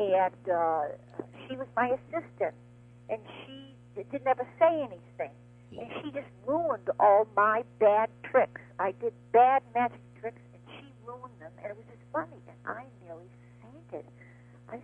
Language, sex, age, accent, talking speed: English, female, 60-79, American, 160 wpm